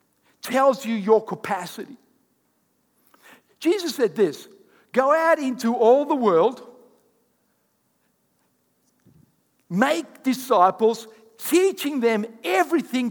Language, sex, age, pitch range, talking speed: English, male, 60-79, 170-245 Hz, 80 wpm